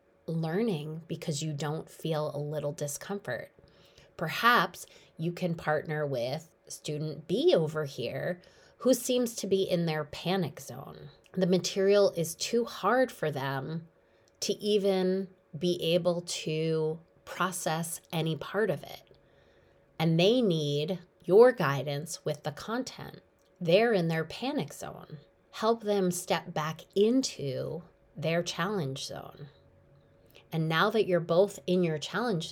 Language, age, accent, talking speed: English, 20-39, American, 130 wpm